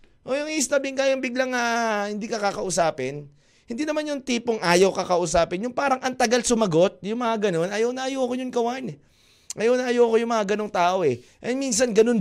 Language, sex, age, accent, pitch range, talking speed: Filipino, male, 20-39, native, 160-255 Hz, 195 wpm